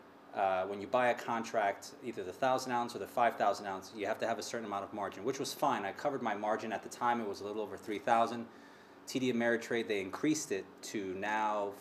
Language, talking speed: English, 235 wpm